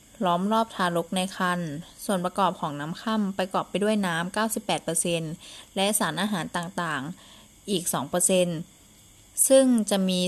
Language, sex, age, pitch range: Thai, female, 20-39, 175-210 Hz